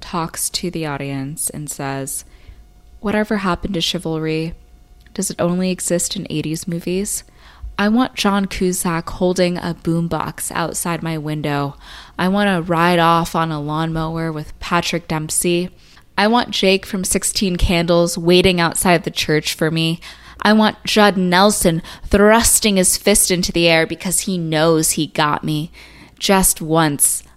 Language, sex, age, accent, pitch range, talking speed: English, female, 20-39, American, 160-190 Hz, 150 wpm